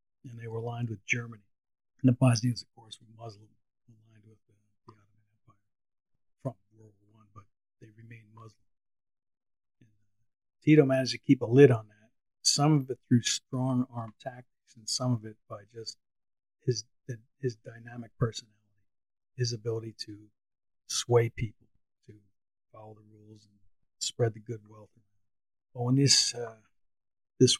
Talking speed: 155 wpm